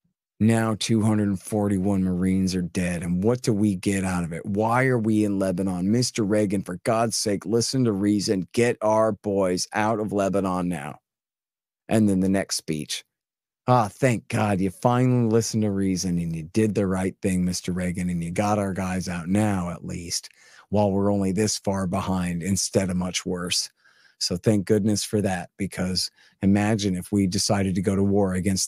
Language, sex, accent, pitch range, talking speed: English, male, American, 95-105 Hz, 185 wpm